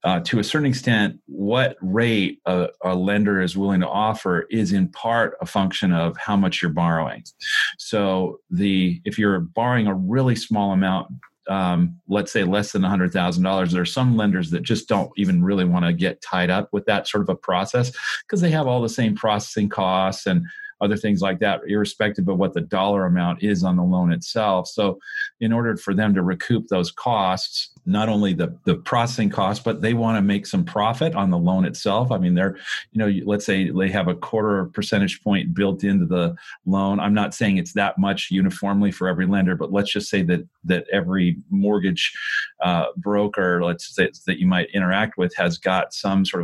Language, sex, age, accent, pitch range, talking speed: English, male, 40-59, American, 90-110 Hz, 205 wpm